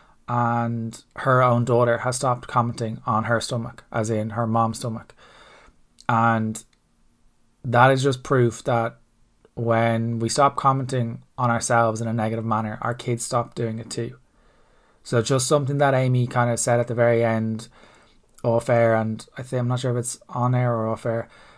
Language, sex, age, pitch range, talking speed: English, male, 20-39, 115-125 Hz, 180 wpm